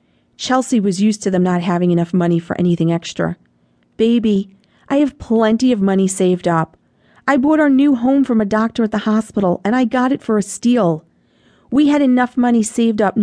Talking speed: 200 wpm